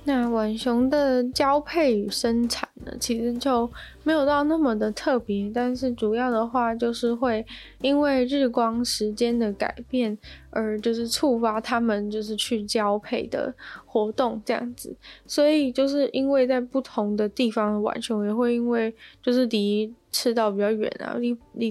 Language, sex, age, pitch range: Chinese, female, 10-29, 215-255 Hz